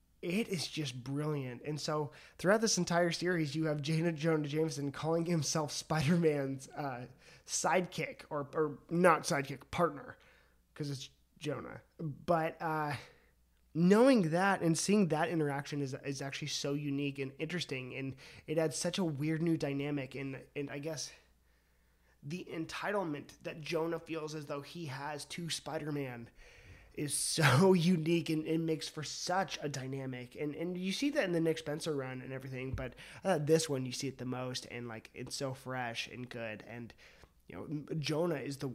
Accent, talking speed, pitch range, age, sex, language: American, 170 wpm, 135-165 Hz, 20-39, male, English